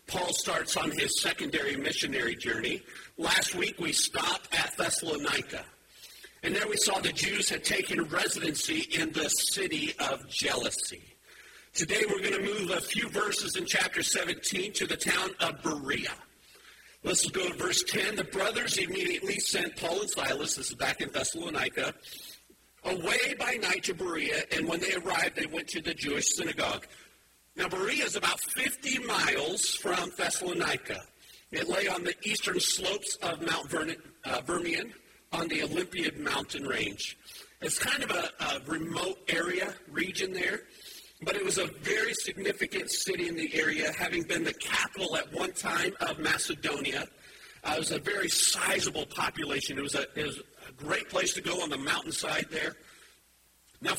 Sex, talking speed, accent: male, 165 wpm, American